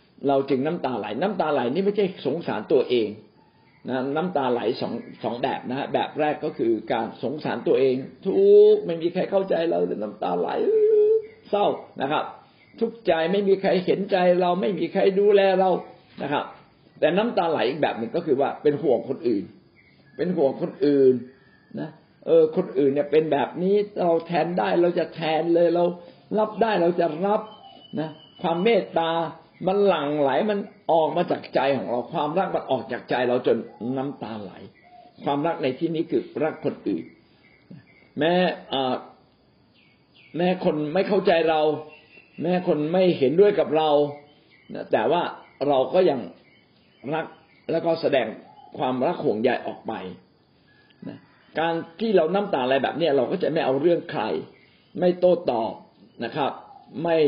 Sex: male